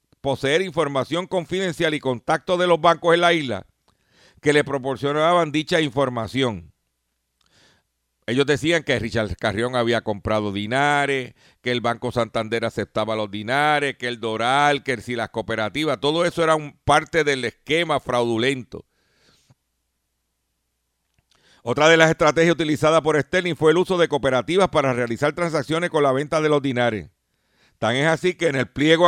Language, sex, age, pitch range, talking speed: Spanish, male, 50-69, 125-165 Hz, 155 wpm